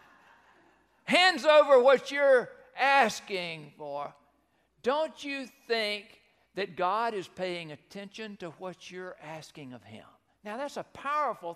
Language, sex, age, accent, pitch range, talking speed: English, male, 60-79, American, 145-190 Hz, 125 wpm